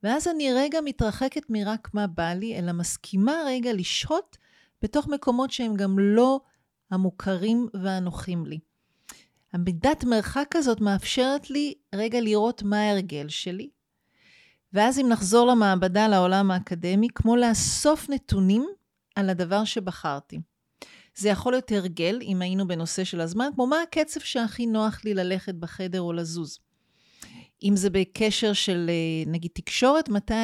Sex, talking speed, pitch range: female, 135 wpm, 185-250 Hz